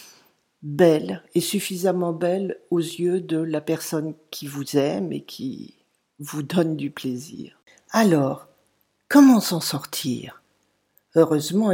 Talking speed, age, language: 120 wpm, 50-69, French